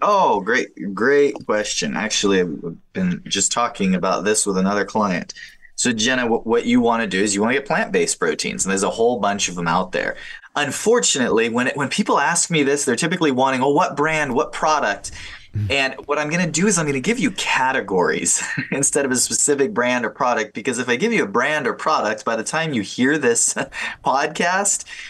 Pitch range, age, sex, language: 95-145 Hz, 20-39, male, English